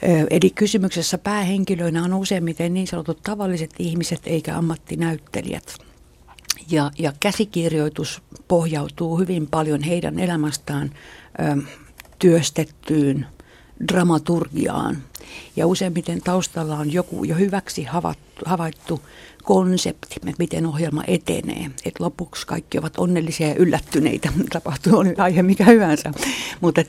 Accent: native